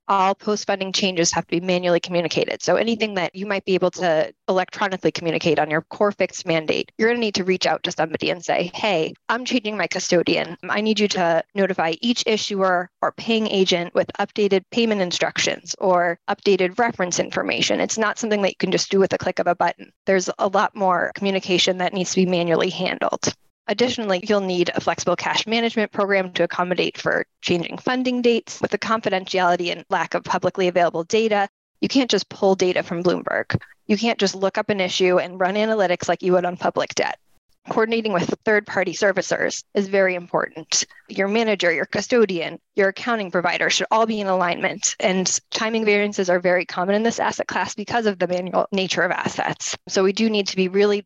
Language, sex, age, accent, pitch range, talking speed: English, female, 10-29, American, 180-210 Hz, 200 wpm